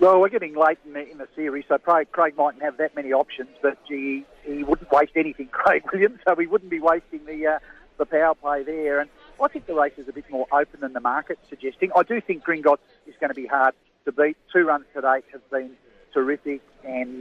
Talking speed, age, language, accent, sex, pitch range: 235 wpm, 50-69, English, Australian, male, 140-165 Hz